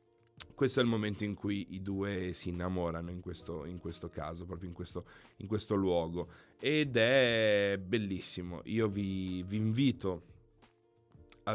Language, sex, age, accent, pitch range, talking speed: Italian, male, 30-49, native, 95-120 Hz, 150 wpm